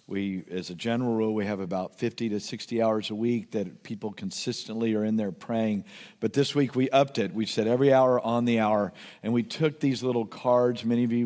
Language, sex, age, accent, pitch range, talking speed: English, male, 50-69, American, 110-130 Hz, 230 wpm